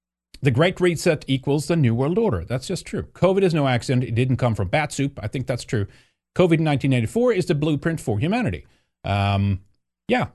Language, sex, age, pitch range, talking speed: English, male, 40-59, 105-155 Hz, 195 wpm